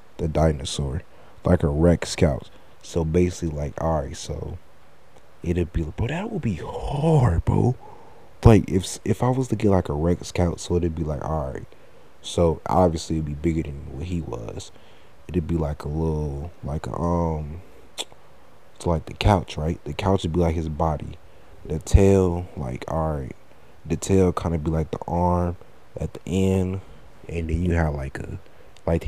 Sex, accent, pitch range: male, American, 80-95 Hz